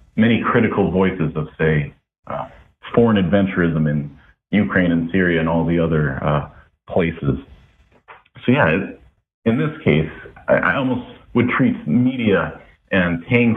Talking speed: 135 wpm